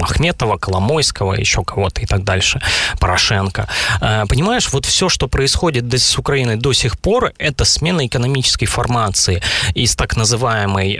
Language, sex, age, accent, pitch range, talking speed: Ukrainian, male, 20-39, native, 100-140 Hz, 135 wpm